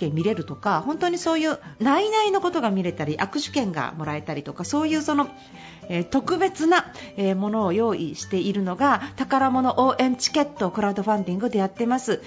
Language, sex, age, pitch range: Japanese, female, 40-59, 190-270 Hz